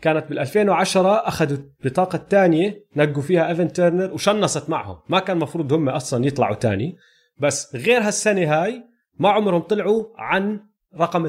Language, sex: Arabic, male